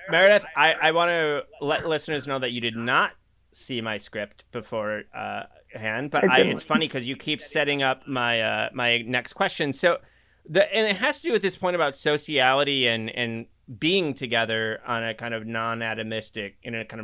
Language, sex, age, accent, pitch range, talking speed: English, male, 30-49, American, 115-145 Hz, 195 wpm